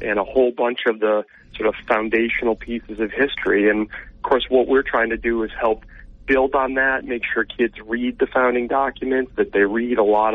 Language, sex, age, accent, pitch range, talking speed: English, male, 40-59, American, 110-130 Hz, 215 wpm